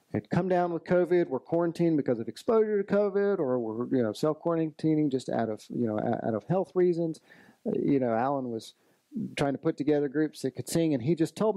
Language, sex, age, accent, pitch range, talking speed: English, male, 40-59, American, 120-170 Hz, 225 wpm